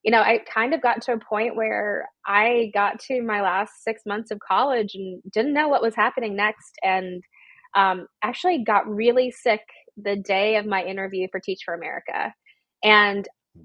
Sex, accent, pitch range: female, American, 195-235 Hz